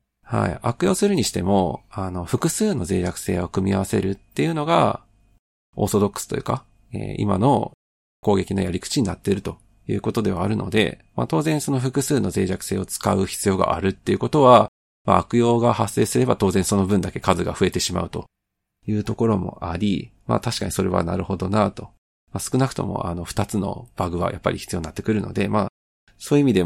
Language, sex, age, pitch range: Japanese, male, 40-59, 90-115 Hz